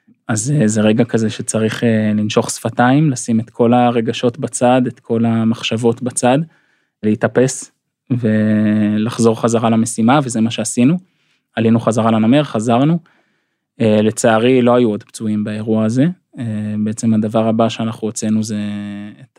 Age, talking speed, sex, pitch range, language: 20-39, 125 wpm, male, 110-120 Hz, Hebrew